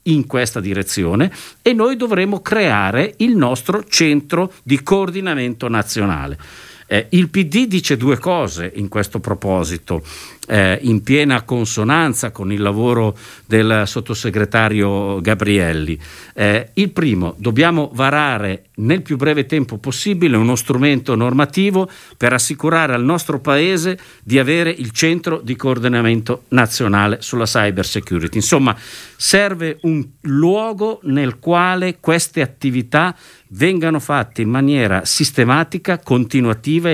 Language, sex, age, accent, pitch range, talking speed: Italian, male, 50-69, native, 110-165 Hz, 120 wpm